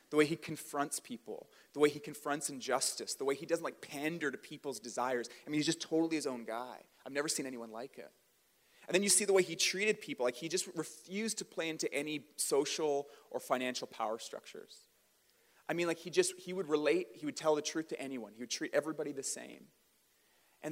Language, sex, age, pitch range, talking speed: English, male, 30-49, 125-170 Hz, 225 wpm